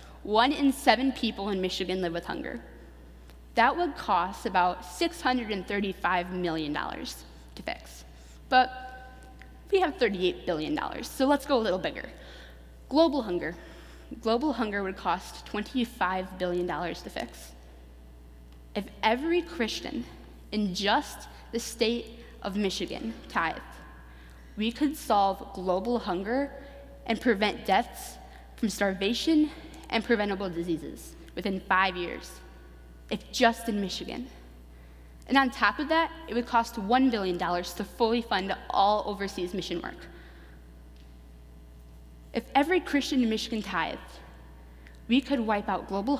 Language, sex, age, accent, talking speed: English, female, 20-39, American, 125 wpm